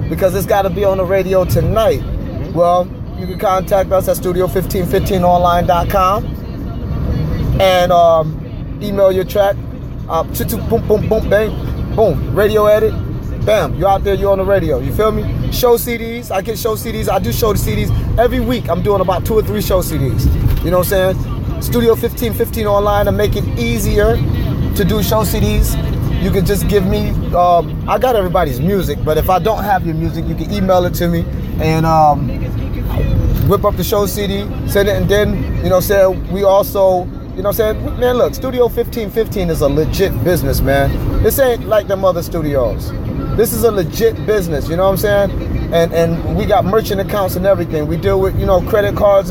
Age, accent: 20-39, American